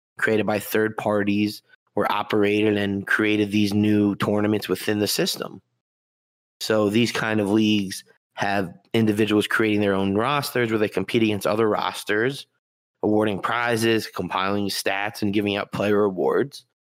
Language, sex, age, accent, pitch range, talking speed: English, male, 20-39, American, 105-115 Hz, 140 wpm